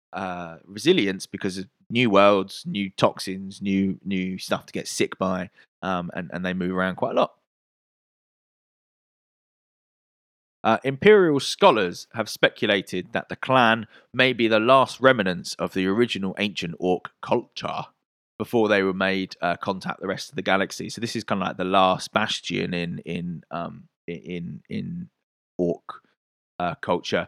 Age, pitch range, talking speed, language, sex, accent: 20-39, 95-135 Hz, 155 wpm, English, male, British